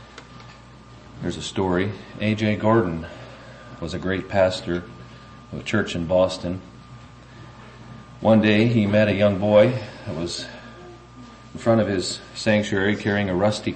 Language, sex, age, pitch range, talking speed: English, male, 40-59, 85-120 Hz, 135 wpm